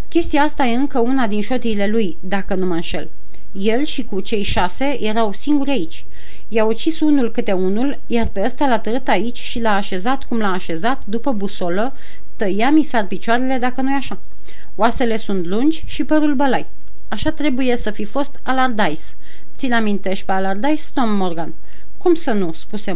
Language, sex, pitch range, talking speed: Romanian, female, 195-270 Hz, 175 wpm